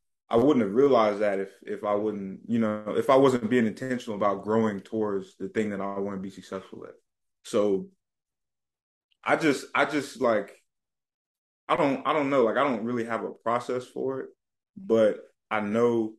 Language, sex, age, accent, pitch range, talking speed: English, male, 20-39, American, 100-115 Hz, 190 wpm